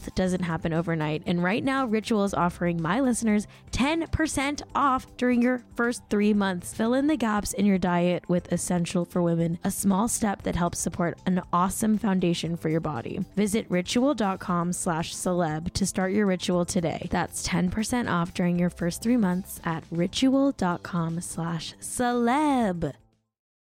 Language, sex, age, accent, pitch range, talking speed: English, female, 10-29, American, 170-220 Hz, 150 wpm